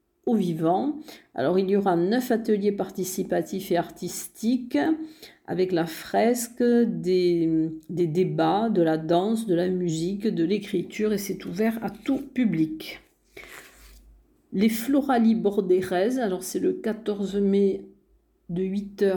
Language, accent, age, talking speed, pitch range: French, French, 50-69, 125 wpm, 175-230 Hz